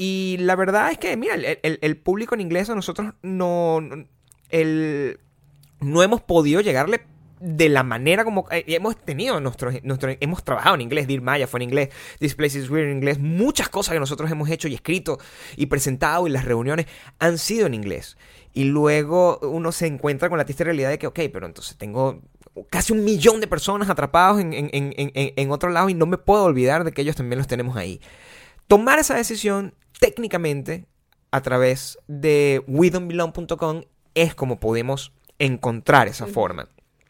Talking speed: 185 wpm